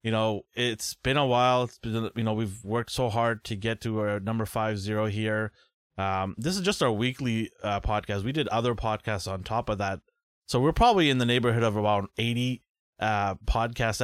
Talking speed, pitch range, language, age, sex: 210 wpm, 105-120 Hz, English, 30-49, male